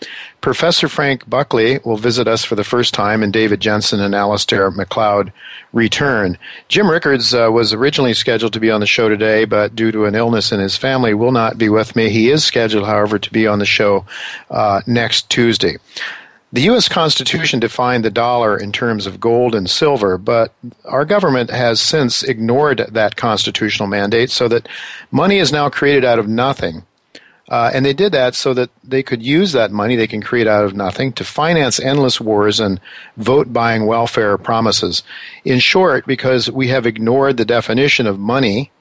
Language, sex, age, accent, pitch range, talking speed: English, male, 50-69, American, 105-130 Hz, 185 wpm